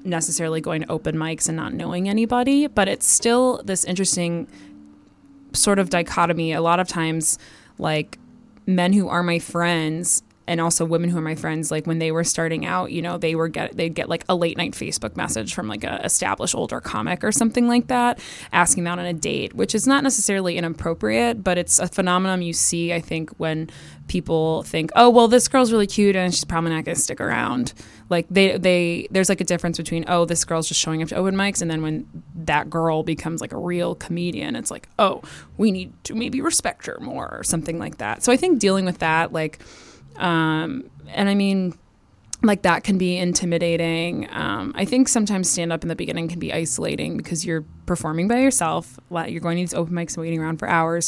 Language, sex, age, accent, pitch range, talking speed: English, female, 20-39, American, 165-190 Hz, 215 wpm